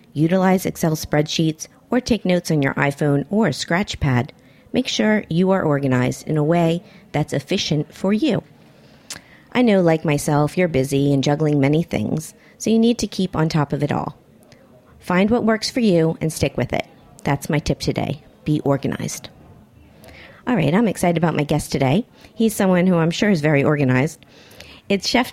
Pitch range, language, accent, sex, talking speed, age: 155-205 Hz, English, American, female, 180 wpm, 40-59